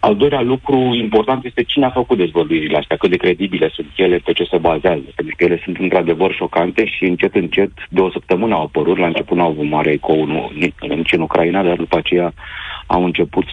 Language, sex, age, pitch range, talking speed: Romanian, male, 40-59, 85-115 Hz, 210 wpm